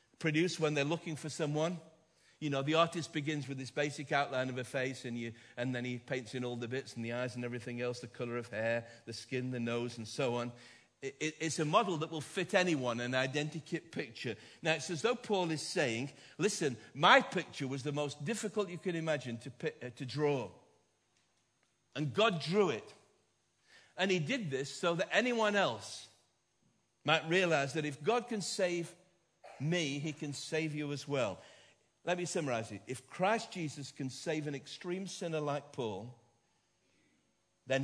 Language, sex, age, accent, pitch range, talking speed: English, male, 50-69, British, 115-160 Hz, 190 wpm